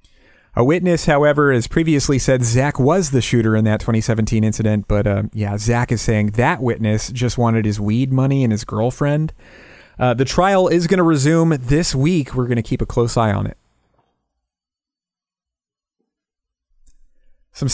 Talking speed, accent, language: 165 wpm, American, English